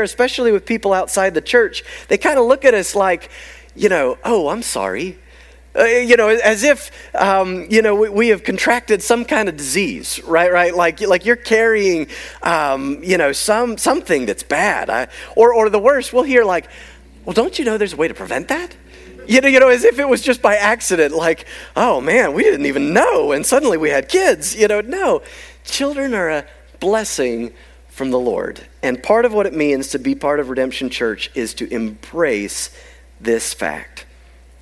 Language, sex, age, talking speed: English, male, 30-49, 200 wpm